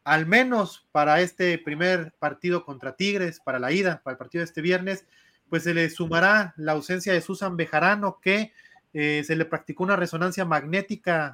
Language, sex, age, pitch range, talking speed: Spanish, male, 30-49, 155-185 Hz, 180 wpm